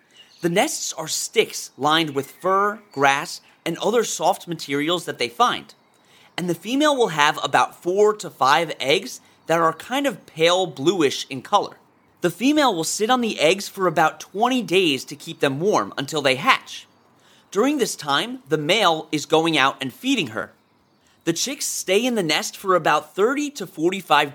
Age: 30-49